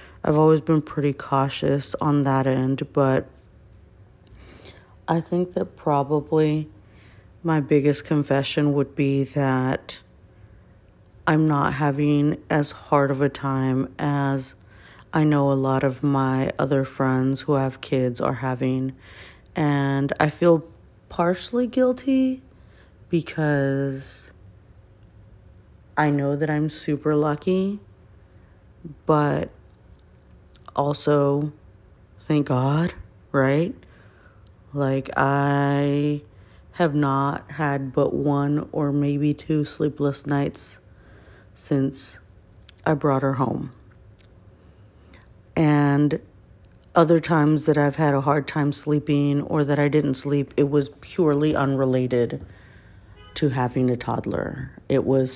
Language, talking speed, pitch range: English, 110 wpm, 105-150 Hz